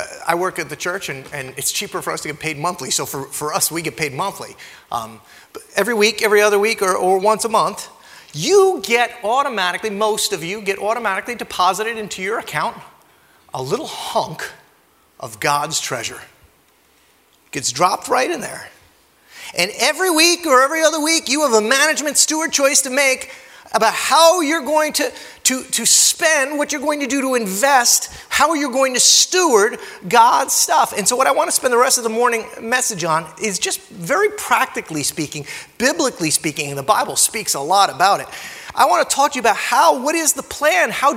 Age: 30-49